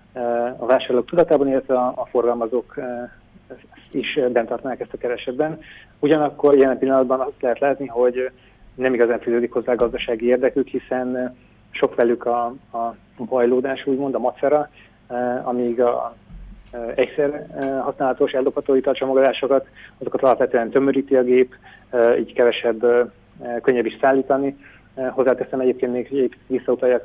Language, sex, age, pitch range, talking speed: Hungarian, male, 30-49, 120-130 Hz, 120 wpm